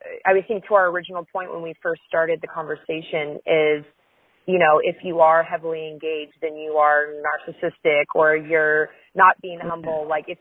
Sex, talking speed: female, 185 wpm